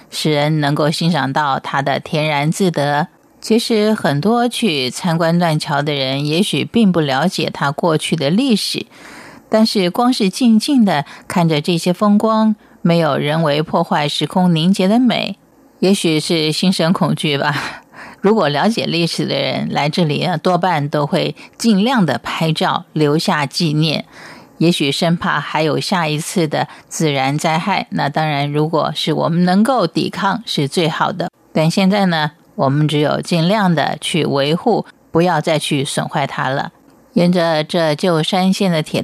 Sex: female